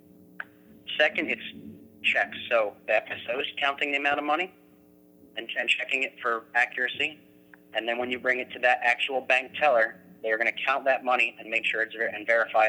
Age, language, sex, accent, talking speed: 30-49, English, male, American, 190 wpm